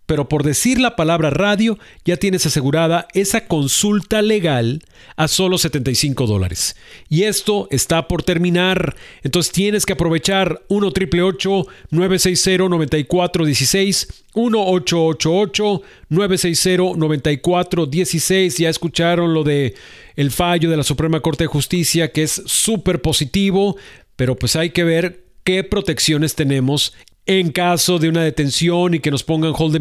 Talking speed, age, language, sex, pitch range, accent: 135 wpm, 40-59, Spanish, male, 140-180 Hz, Mexican